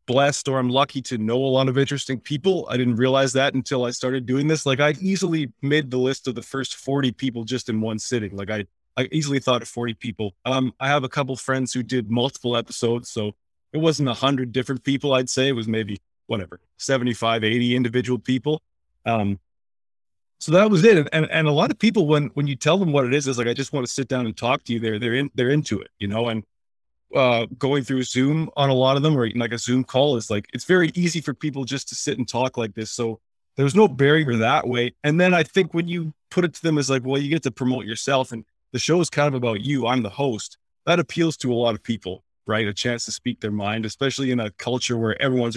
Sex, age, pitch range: male, 20-39, 115-140 Hz